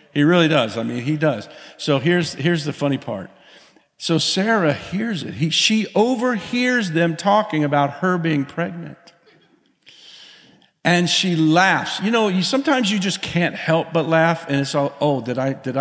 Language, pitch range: English, 130-165 Hz